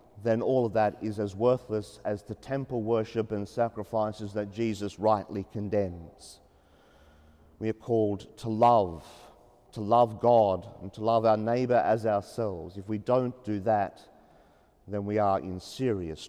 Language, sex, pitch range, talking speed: English, male, 105-125 Hz, 155 wpm